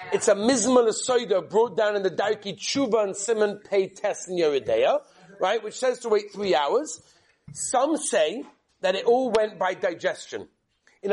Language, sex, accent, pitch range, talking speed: English, male, British, 185-235 Hz, 165 wpm